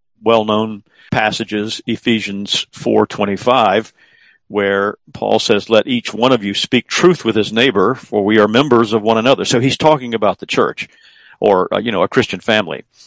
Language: English